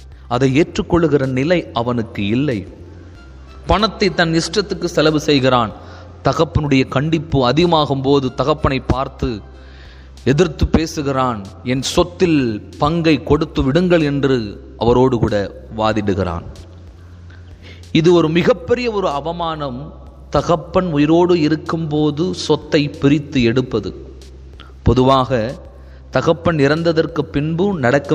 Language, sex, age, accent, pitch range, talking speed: Tamil, male, 30-49, native, 90-150 Hz, 90 wpm